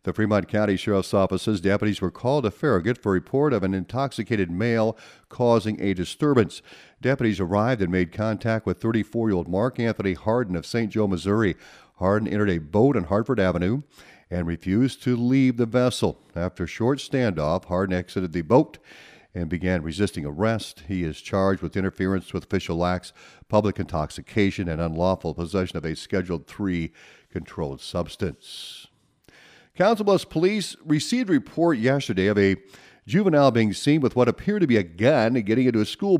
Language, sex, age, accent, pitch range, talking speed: English, male, 50-69, American, 90-115 Hz, 170 wpm